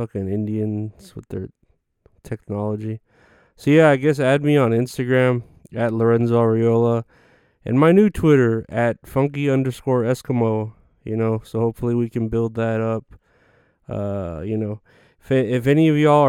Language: English